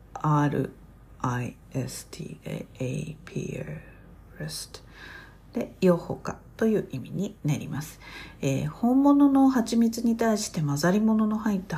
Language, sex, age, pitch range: Japanese, female, 50-69, 140-200 Hz